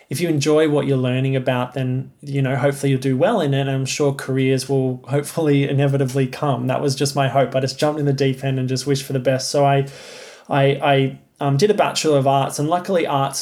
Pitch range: 135-145 Hz